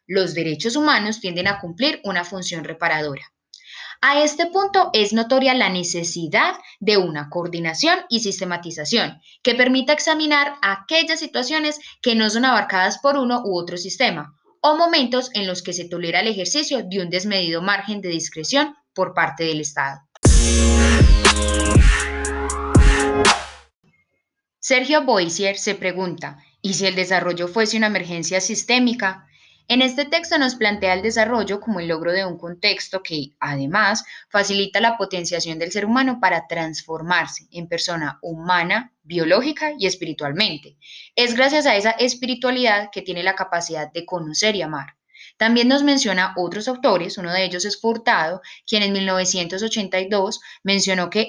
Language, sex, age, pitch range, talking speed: Spanish, female, 10-29, 175-235 Hz, 145 wpm